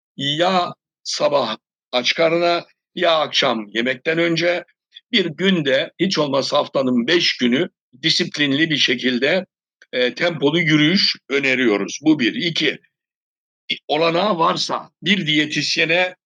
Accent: native